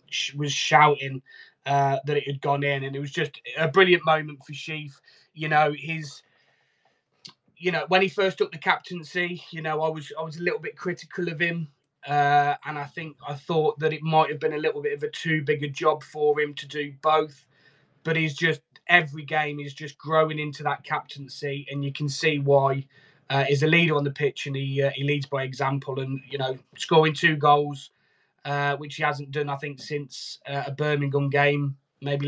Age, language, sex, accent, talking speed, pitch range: 20-39, English, male, British, 210 wpm, 140-160 Hz